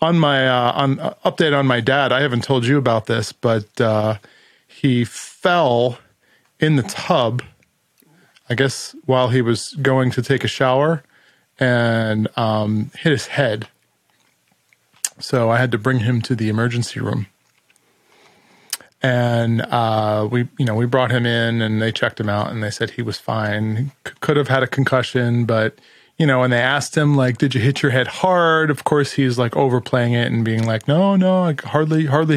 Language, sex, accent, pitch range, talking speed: English, male, American, 115-150 Hz, 185 wpm